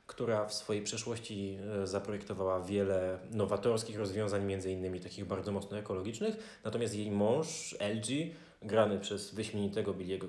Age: 20-39